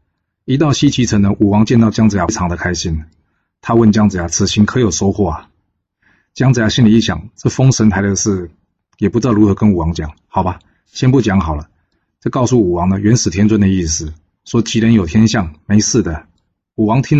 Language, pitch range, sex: Chinese, 90-110 Hz, male